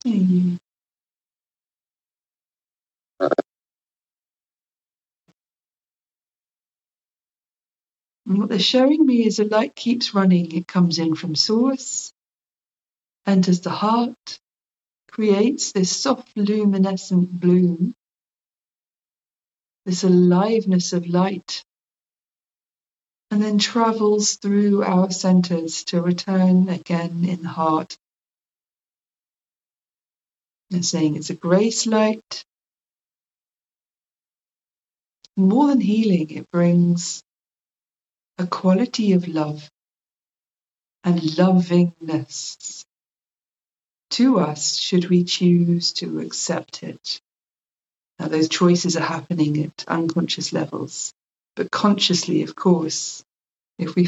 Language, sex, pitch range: English, female, 165-205 Hz